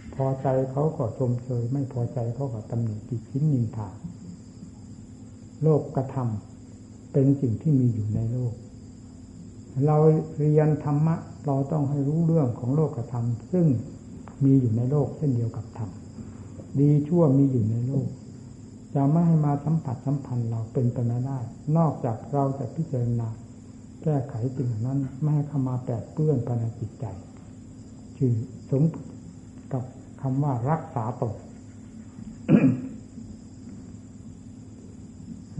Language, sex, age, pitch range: Thai, male, 60-79, 115-140 Hz